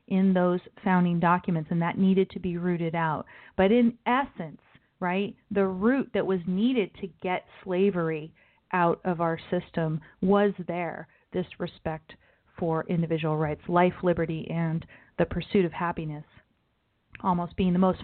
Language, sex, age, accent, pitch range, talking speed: English, female, 40-59, American, 170-200 Hz, 150 wpm